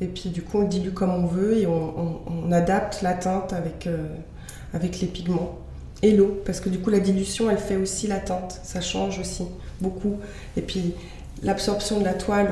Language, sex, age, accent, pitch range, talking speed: French, female, 20-39, French, 175-200 Hz, 215 wpm